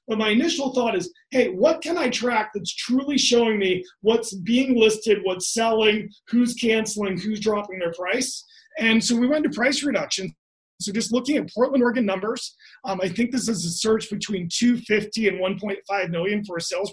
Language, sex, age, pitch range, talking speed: English, male, 30-49, 200-250 Hz, 190 wpm